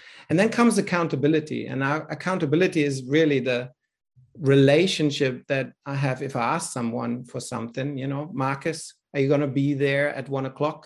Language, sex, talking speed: English, male, 170 wpm